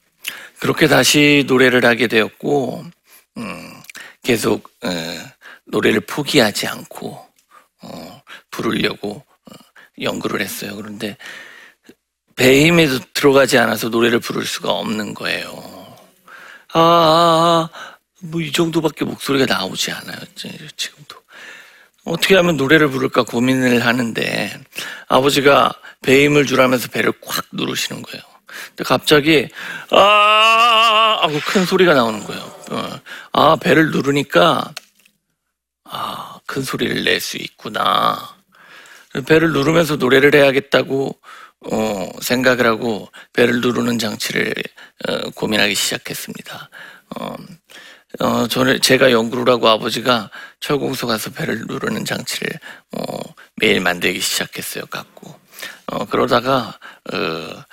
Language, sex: Korean, male